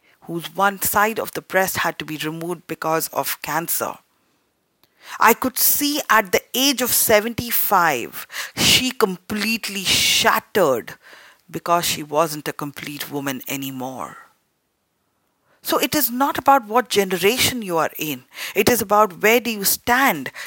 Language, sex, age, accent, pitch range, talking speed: English, female, 40-59, Indian, 170-230 Hz, 140 wpm